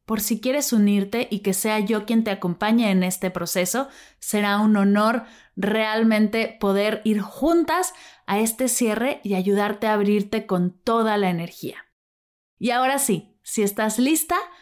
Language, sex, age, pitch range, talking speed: Spanish, female, 20-39, 165-235 Hz, 155 wpm